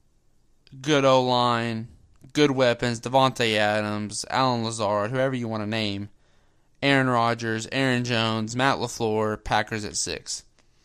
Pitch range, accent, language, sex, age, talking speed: 110-140 Hz, American, English, male, 20-39, 120 wpm